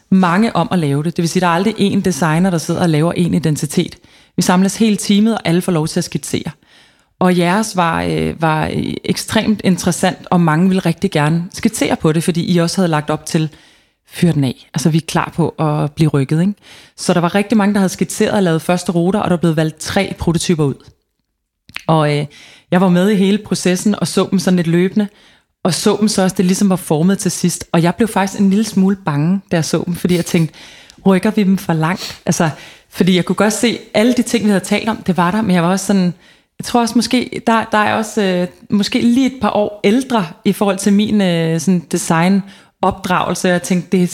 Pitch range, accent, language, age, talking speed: 170-200 Hz, native, Danish, 30-49, 235 wpm